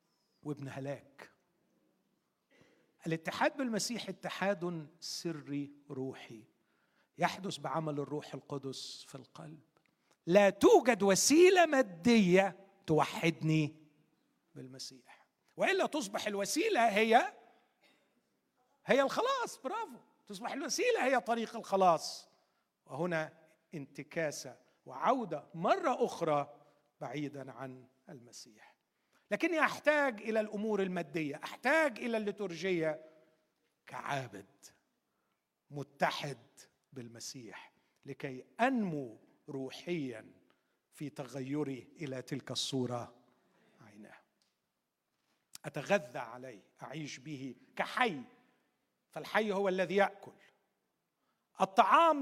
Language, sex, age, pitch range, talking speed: Arabic, male, 50-69, 145-235 Hz, 80 wpm